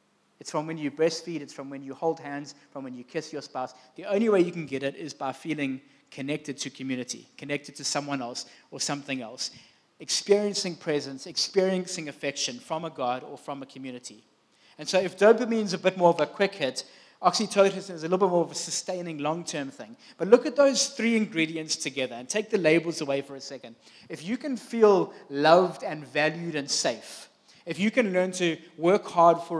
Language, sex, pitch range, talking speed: English, male, 140-180 Hz, 210 wpm